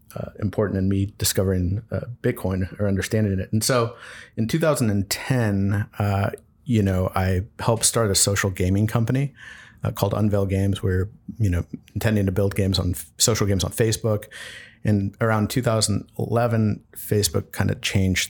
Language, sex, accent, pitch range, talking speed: English, male, American, 95-115 Hz, 150 wpm